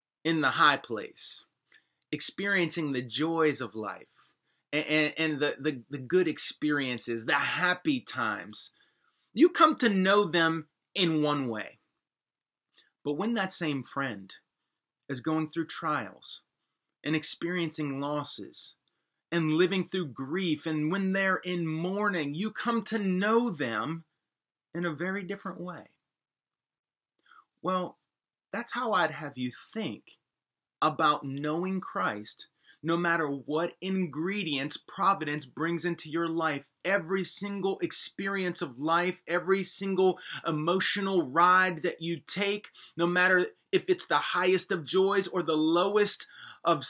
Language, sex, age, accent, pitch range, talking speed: English, male, 30-49, American, 150-190 Hz, 130 wpm